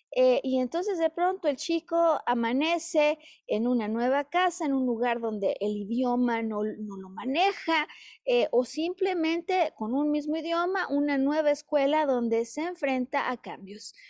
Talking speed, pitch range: 160 wpm, 235-305 Hz